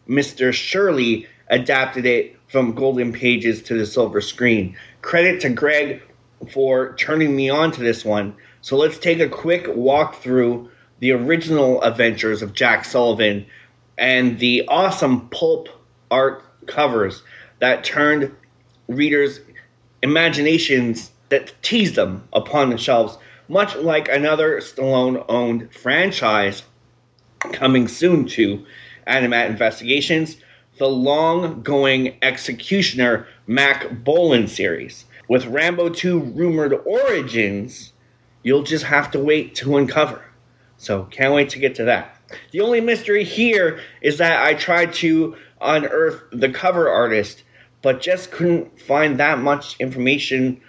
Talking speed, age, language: 125 wpm, 30-49, English